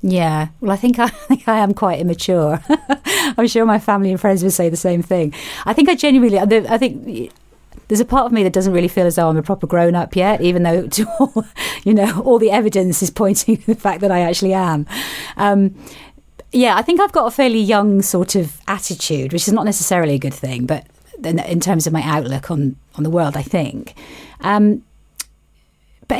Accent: British